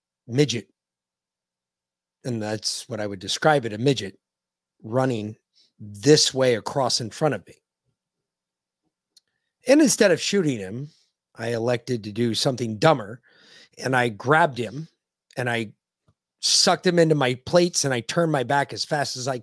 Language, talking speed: English, 150 wpm